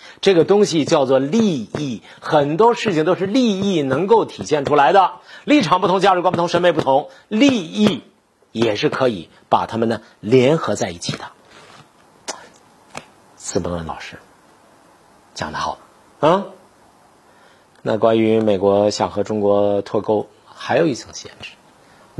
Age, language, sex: 50-69, Chinese, male